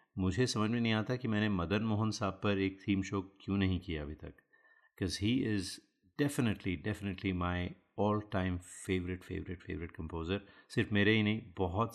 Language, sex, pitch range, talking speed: Hindi, male, 90-110 Hz, 180 wpm